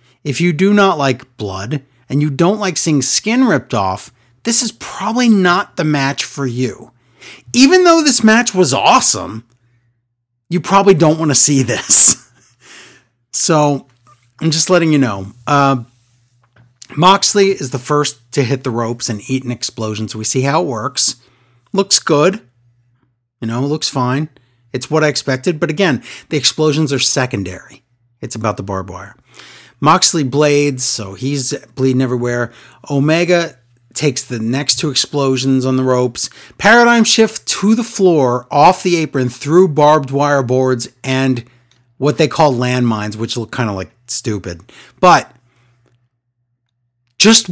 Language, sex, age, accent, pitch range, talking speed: English, male, 30-49, American, 120-155 Hz, 155 wpm